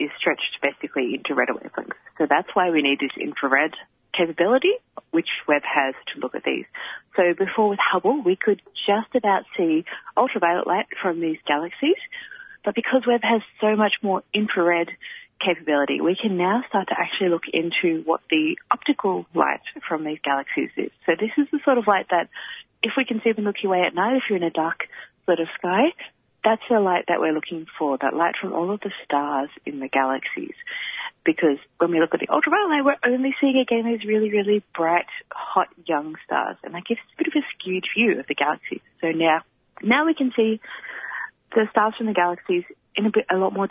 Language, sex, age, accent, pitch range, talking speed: English, female, 30-49, Australian, 165-240 Hz, 210 wpm